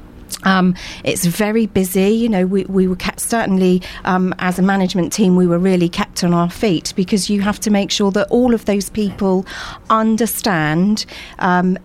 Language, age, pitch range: English, 40-59, 175-205 Hz